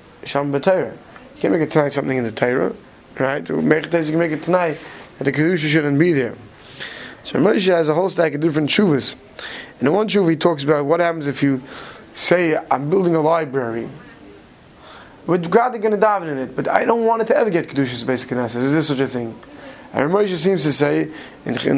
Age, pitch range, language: 20-39, 135-165 Hz, English